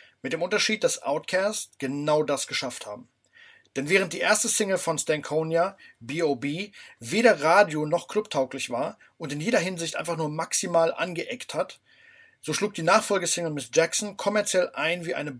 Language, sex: German, male